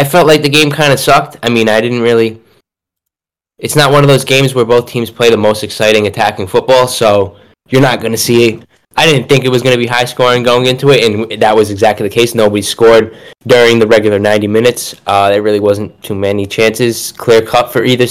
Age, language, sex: 10-29, English, male